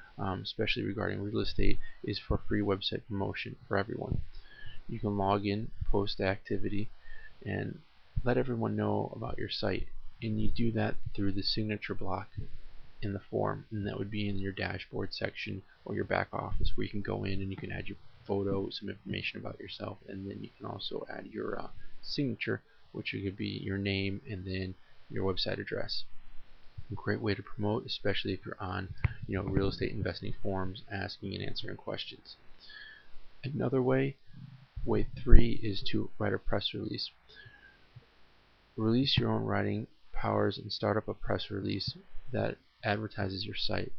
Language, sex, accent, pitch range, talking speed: English, male, American, 100-115 Hz, 175 wpm